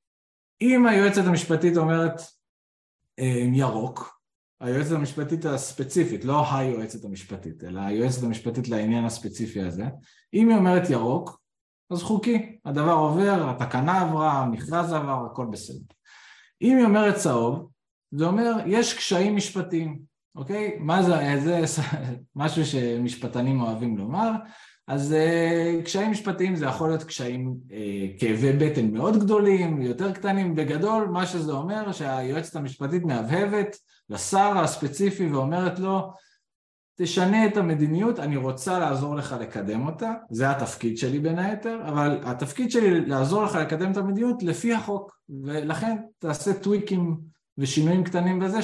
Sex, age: male, 20-39